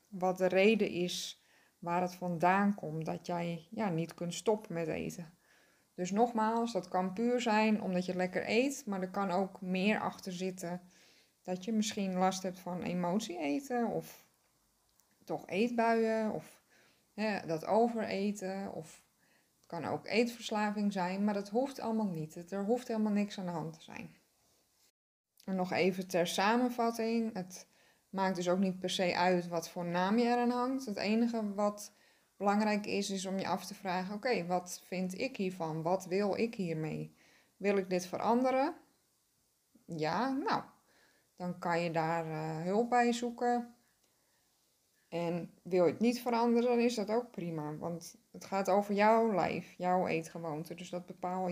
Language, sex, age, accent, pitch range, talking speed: Dutch, female, 20-39, Dutch, 175-225 Hz, 170 wpm